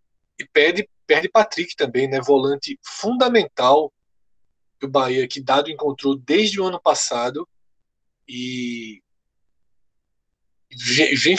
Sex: male